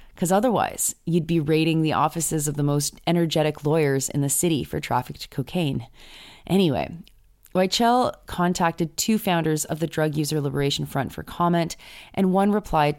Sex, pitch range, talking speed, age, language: female, 150-185 Hz, 155 wpm, 30-49, English